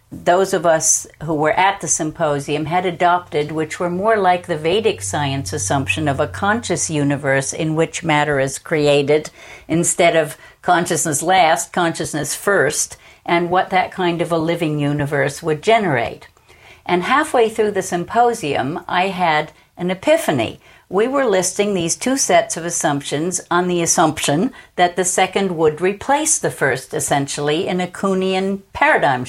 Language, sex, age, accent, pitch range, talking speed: English, female, 50-69, American, 160-195 Hz, 155 wpm